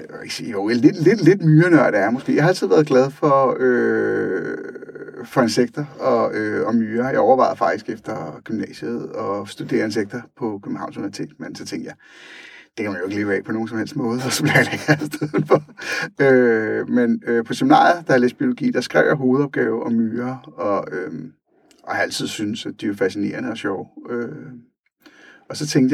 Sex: male